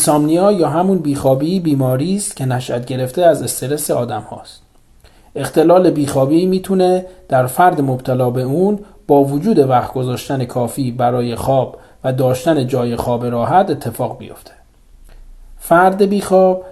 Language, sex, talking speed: Persian, male, 135 wpm